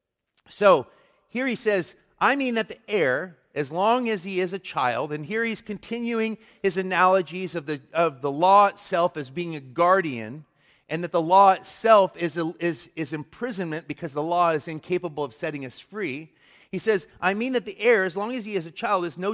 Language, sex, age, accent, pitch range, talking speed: English, male, 40-59, American, 150-190 Hz, 200 wpm